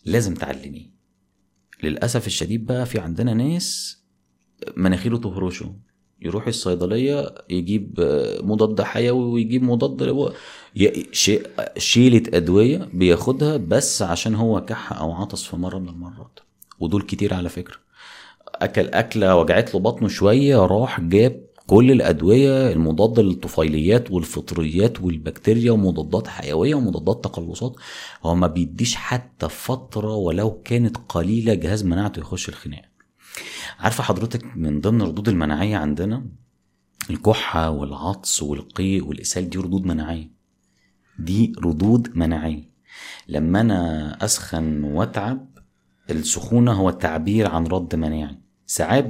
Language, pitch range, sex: Arabic, 85-115 Hz, male